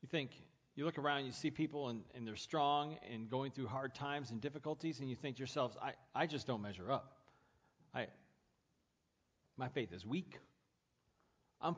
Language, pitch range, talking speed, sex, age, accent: English, 110-160 Hz, 185 wpm, male, 40-59, American